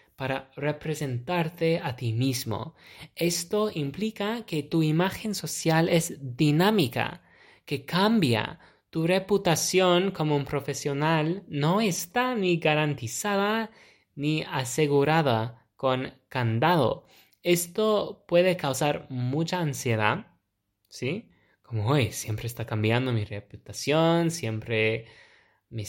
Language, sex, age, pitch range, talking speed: Spanish, male, 20-39, 130-175 Hz, 100 wpm